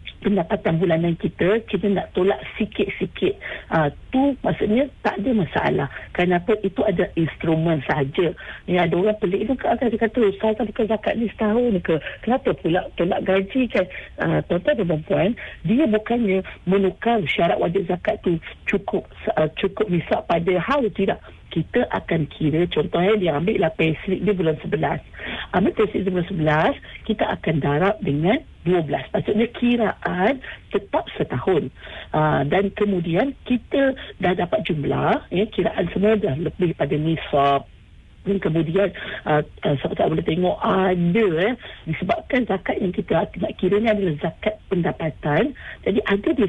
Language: English